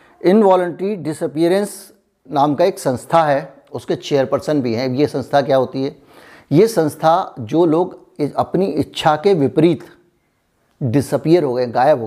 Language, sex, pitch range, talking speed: Hindi, male, 135-170 Hz, 145 wpm